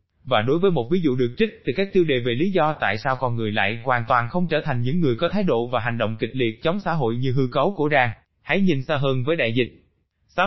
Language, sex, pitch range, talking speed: Vietnamese, male, 125-175 Hz, 290 wpm